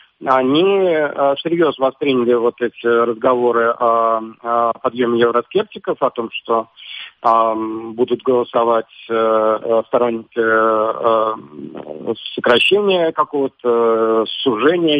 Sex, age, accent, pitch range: male, 40-59, native, 115-135 Hz